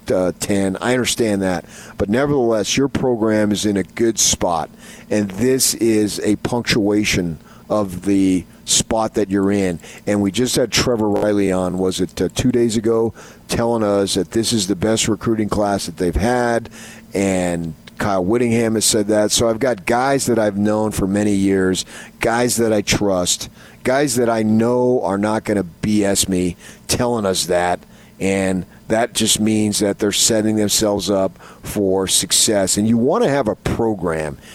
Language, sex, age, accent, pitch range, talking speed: English, male, 40-59, American, 95-115 Hz, 175 wpm